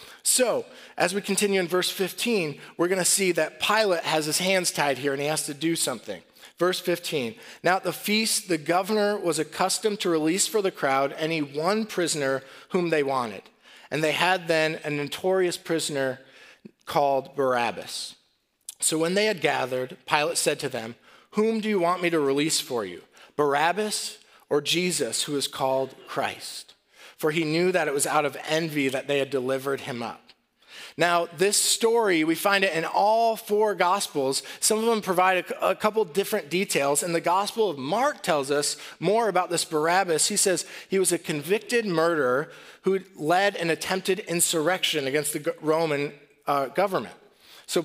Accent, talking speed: American, 175 wpm